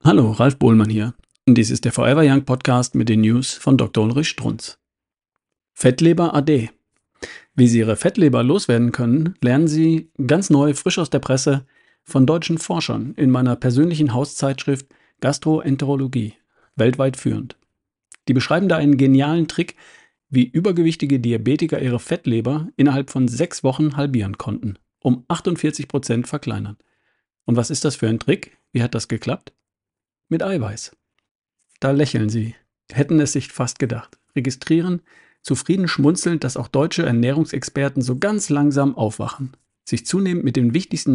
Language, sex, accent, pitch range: German, male, German, 125-155 Hz